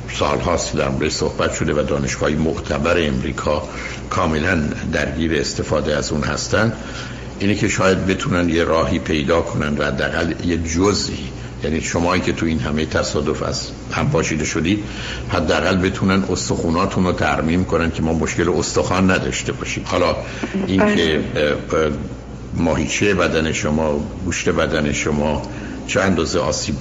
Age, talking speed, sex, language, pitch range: 60-79, 135 wpm, male, Persian, 75-90 Hz